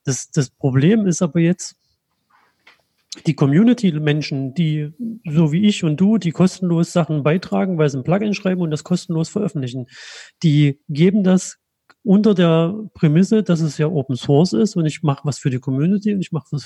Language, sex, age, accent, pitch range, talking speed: German, male, 40-59, German, 150-190 Hz, 180 wpm